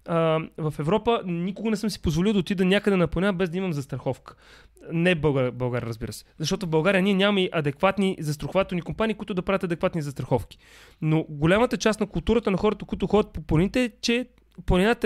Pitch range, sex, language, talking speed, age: 165-220 Hz, male, Bulgarian, 195 wpm, 30-49